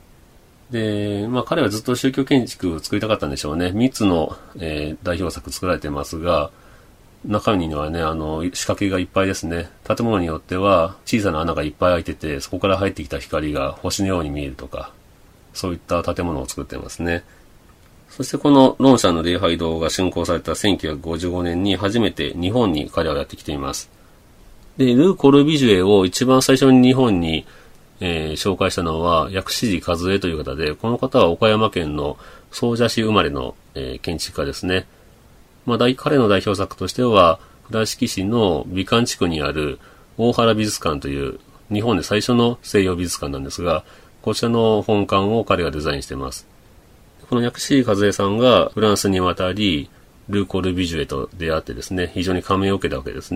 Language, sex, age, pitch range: Japanese, male, 40-59, 85-115 Hz